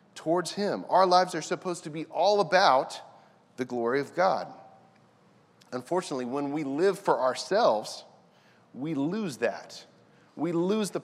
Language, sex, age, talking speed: English, male, 40-59, 140 wpm